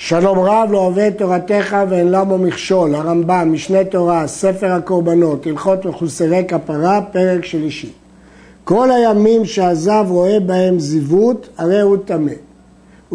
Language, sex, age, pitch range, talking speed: Hebrew, male, 60-79, 170-225 Hz, 125 wpm